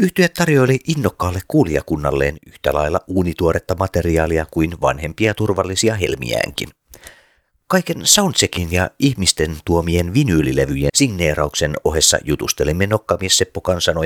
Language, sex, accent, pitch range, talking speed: Finnish, male, native, 80-110 Hz, 95 wpm